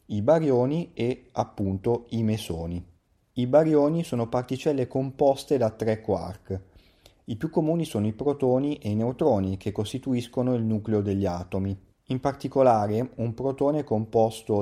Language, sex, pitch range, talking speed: Italian, male, 100-130 Hz, 145 wpm